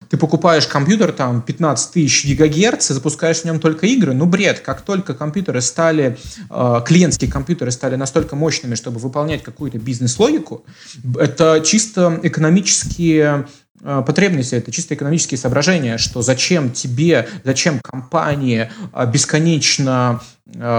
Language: Russian